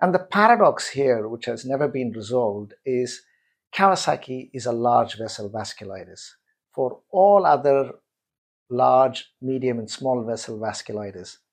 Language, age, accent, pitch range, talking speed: English, 50-69, Indian, 110-145 Hz, 130 wpm